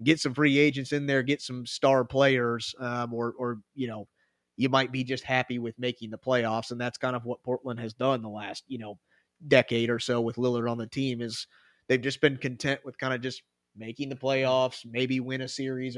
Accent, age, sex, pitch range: American, 30-49, male, 120-135 Hz